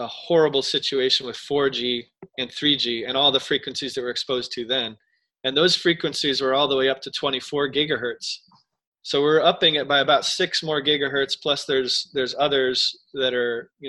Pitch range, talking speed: 130-160 Hz, 185 wpm